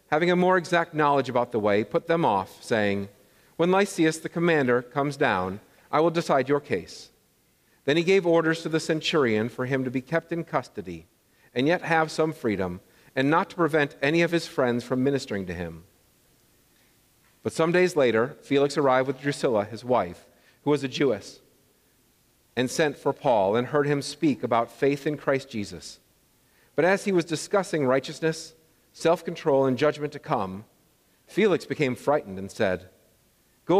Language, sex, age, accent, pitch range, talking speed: English, male, 50-69, American, 120-165 Hz, 175 wpm